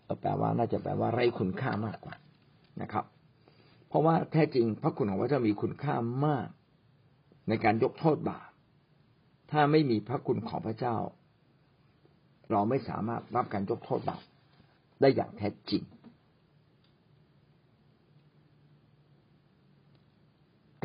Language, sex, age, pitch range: Thai, male, 60-79, 110-150 Hz